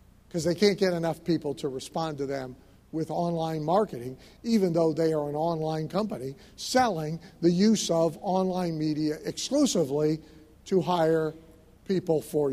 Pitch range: 115-180 Hz